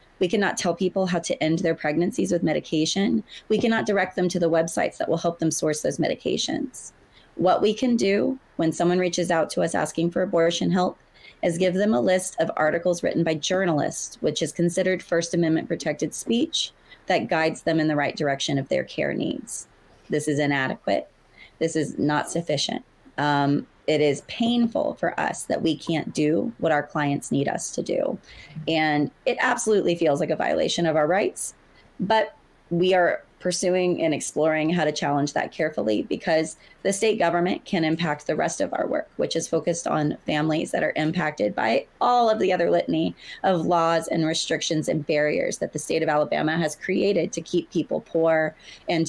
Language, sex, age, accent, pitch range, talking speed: English, female, 30-49, American, 155-185 Hz, 190 wpm